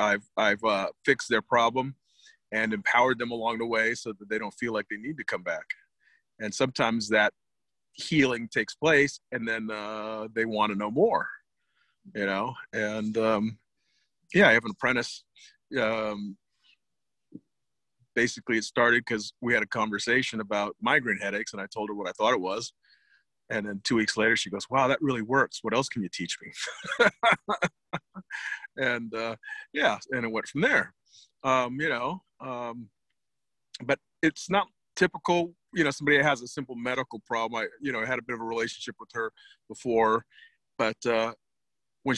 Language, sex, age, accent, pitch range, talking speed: English, male, 40-59, American, 110-140 Hz, 175 wpm